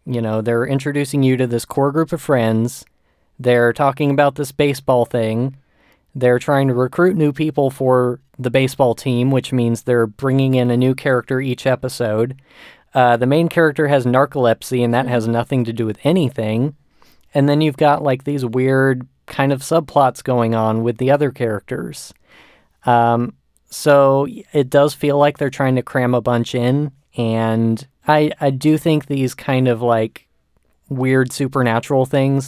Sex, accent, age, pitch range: male, American, 20-39, 120-140 Hz